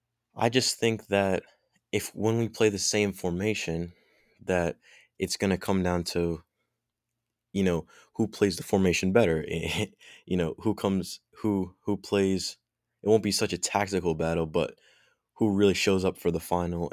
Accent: American